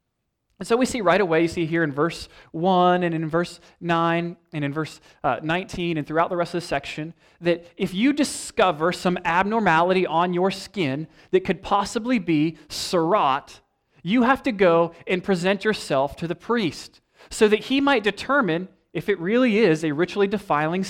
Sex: male